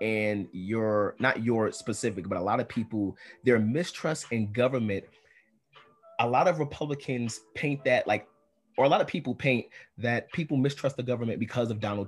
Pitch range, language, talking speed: 110-135 Hz, English, 175 wpm